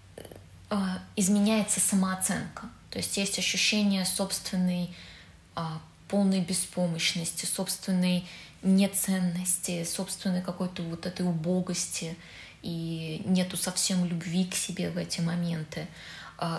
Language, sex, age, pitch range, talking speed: Russian, female, 20-39, 170-195 Hz, 100 wpm